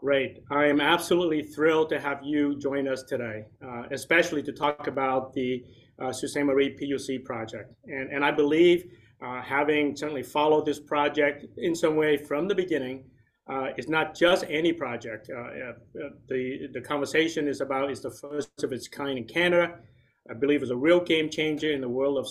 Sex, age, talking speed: male, 30-49, 190 wpm